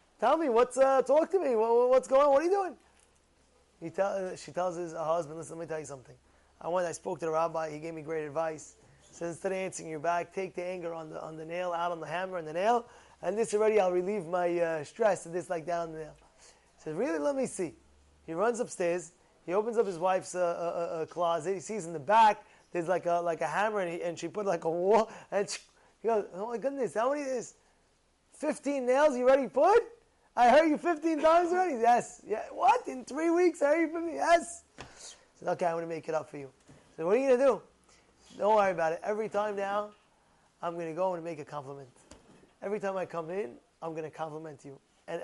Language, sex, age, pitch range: English, male, 20-39, 170-245 Hz